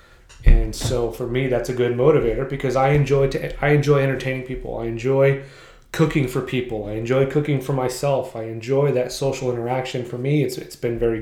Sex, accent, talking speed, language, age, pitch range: male, American, 200 wpm, English, 30-49, 120-140 Hz